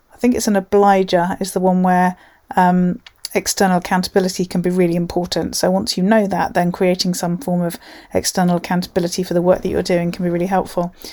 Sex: female